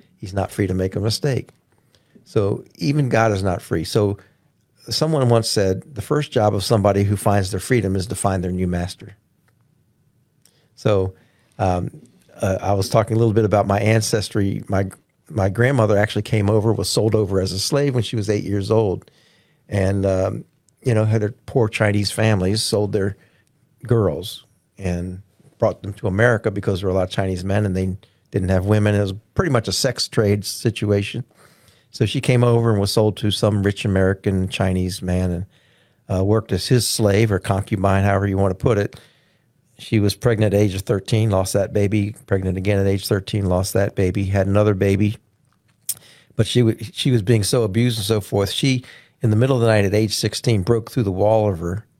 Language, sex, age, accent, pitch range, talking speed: English, male, 50-69, American, 100-115 Hz, 200 wpm